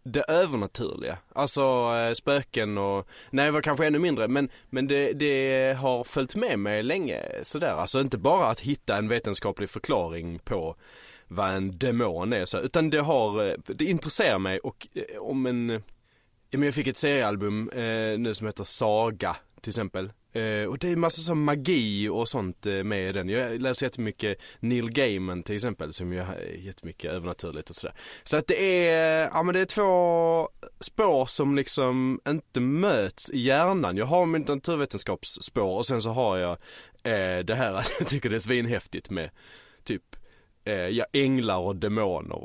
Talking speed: 160 wpm